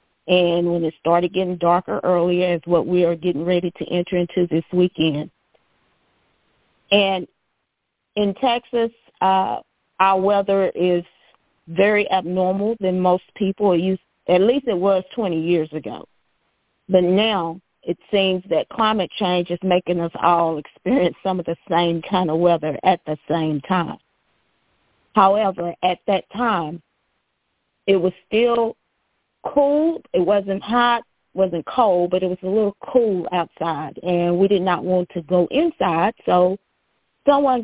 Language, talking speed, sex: English, 145 wpm, female